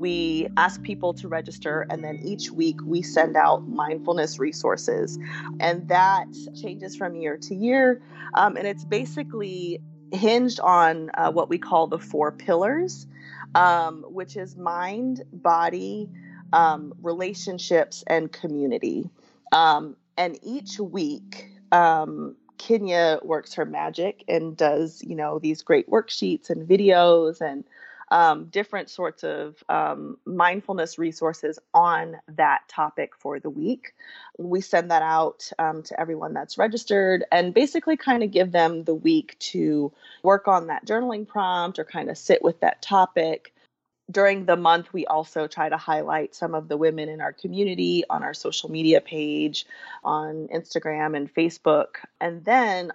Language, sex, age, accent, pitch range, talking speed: English, female, 30-49, American, 155-200 Hz, 150 wpm